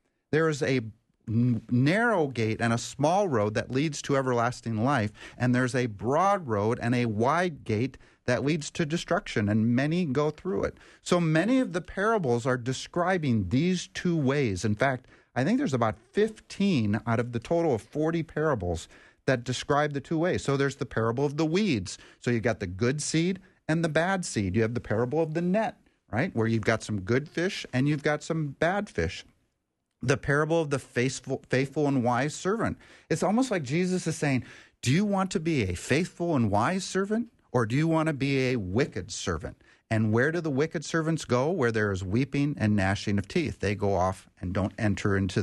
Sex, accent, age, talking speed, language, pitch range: male, American, 40-59, 205 wpm, English, 115-160 Hz